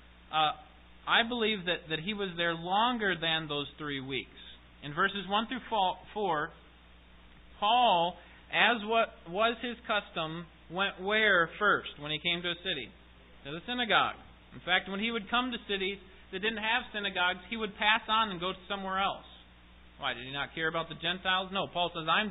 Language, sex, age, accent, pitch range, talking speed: English, male, 30-49, American, 130-195 Hz, 185 wpm